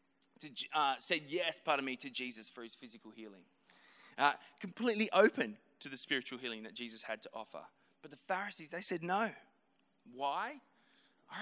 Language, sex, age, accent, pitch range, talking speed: English, male, 20-39, Australian, 155-220 Hz, 165 wpm